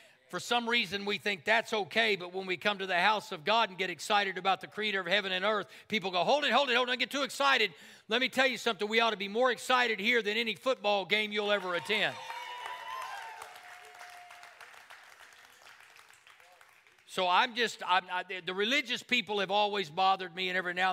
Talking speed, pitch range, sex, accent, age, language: 210 wpm, 175-230 Hz, male, American, 50-69, English